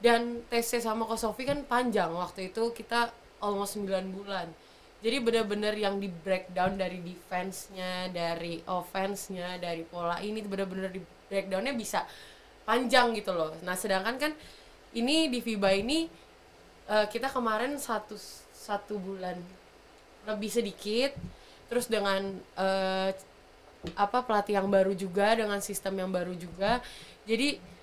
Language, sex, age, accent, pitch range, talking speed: Indonesian, female, 20-39, native, 195-235 Hz, 130 wpm